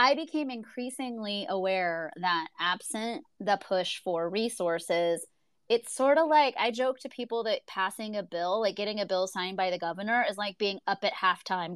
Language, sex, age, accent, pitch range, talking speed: English, female, 30-49, American, 185-235 Hz, 185 wpm